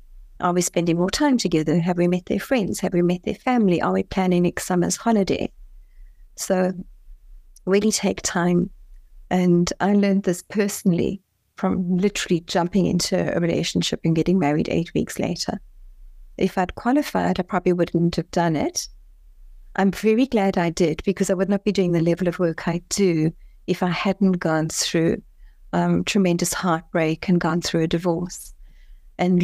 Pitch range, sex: 170-195 Hz, female